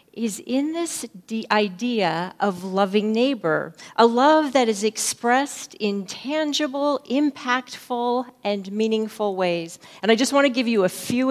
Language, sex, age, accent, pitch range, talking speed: English, female, 40-59, American, 205-250 Hz, 140 wpm